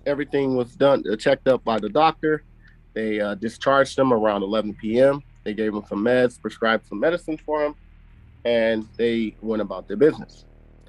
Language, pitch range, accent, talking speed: English, 110-155 Hz, American, 175 wpm